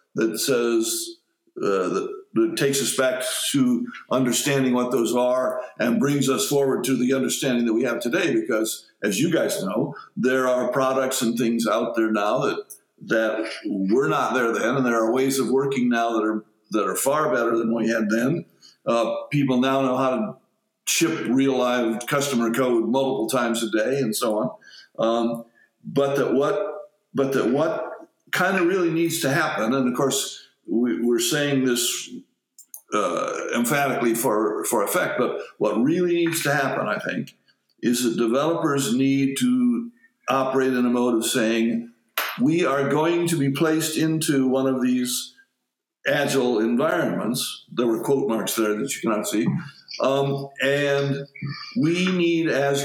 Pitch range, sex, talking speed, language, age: 120-160 Hz, male, 170 wpm, English, 50-69